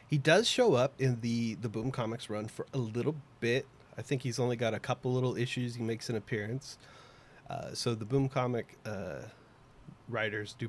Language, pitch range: English, 115-140 Hz